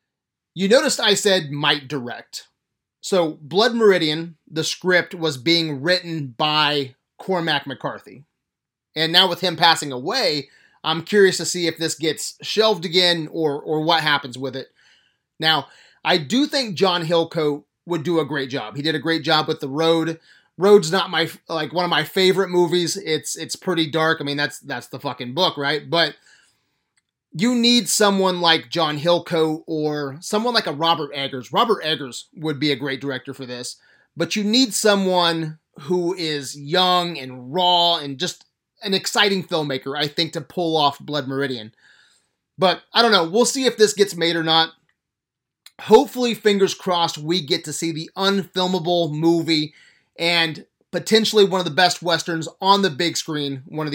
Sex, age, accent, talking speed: male, 30-49, American, 175 wpm